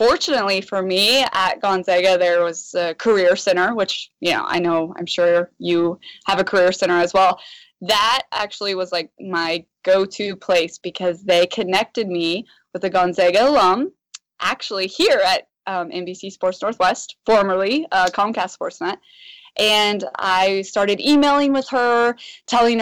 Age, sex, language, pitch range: 20-39, female, English, 180-245 Hz